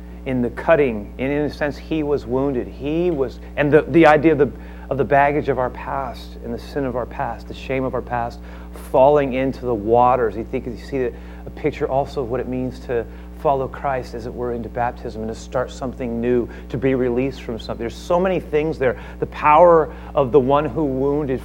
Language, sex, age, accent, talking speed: English, male, 40-59, American, 225 wpm